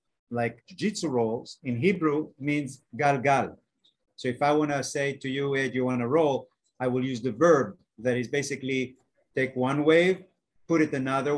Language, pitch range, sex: Bulgarian, 125-155 Hz, male